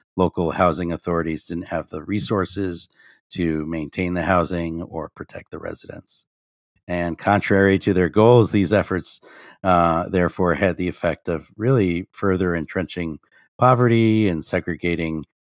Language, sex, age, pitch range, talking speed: English, male, 50-69, 85-105 Hz, 130 wpm